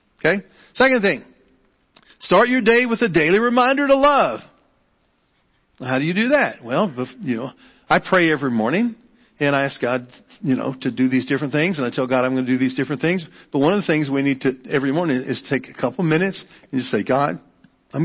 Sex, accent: male, American